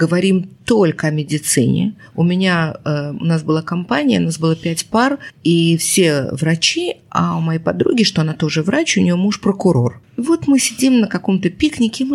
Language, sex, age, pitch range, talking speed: Russian, female, 20-39, 160-245 Hz, 195 wpm